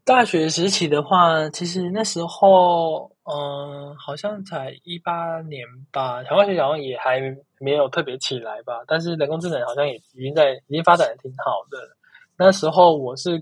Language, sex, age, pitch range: Chinese, male, 20-39, 135-175 Hz